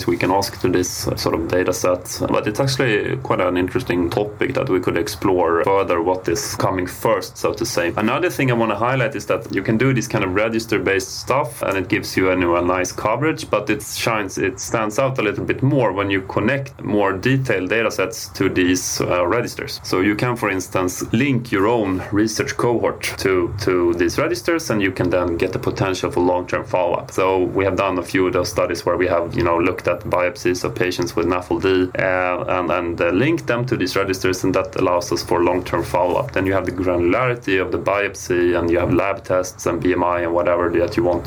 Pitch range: 90-115 Hz